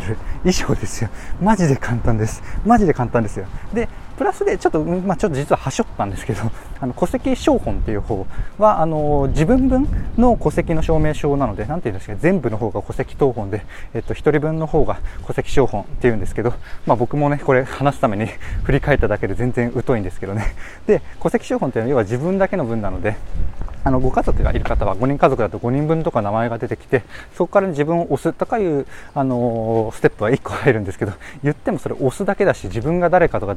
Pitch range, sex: 110-160 Hz, male